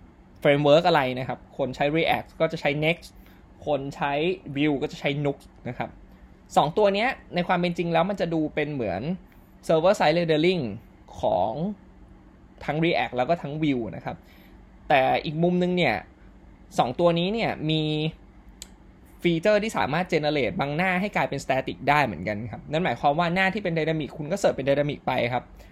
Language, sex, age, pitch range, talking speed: English, male, 20-39, 140-175 Hz, 70 wpm